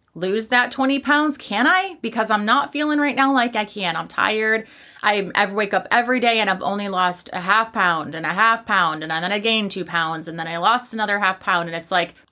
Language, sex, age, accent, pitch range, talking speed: English, female, 30-49, American, 185-230 Hz, 240 wpm